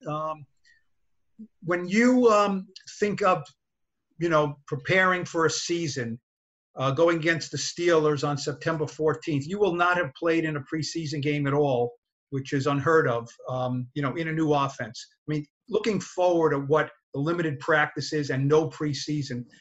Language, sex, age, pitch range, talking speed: English, male, 50-69, 115-165 Hz, 165 wpm